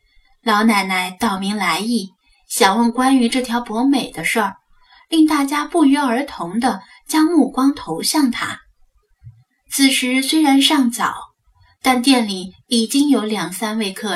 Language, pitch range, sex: Chinese, 215-295 Hz, female